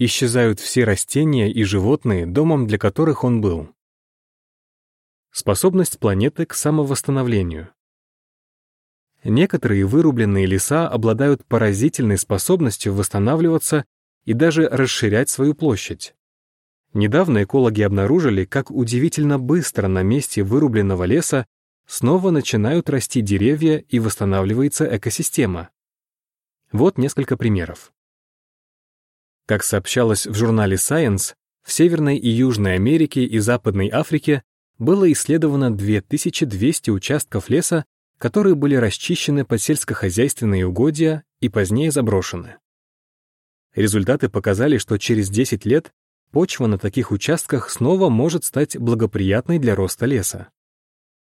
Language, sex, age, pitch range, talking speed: Russian, male, 30-49, 105-150 Hz, 105 wpm